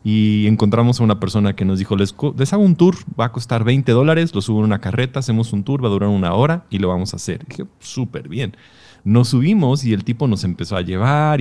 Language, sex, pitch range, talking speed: Spanish, male, 100-130 Hz, 260 wpm